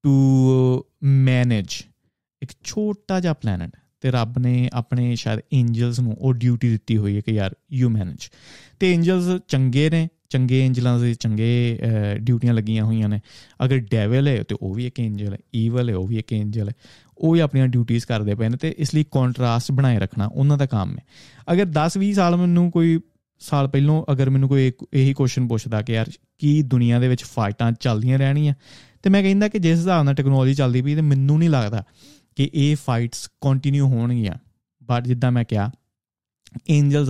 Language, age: Punjabi, 30-49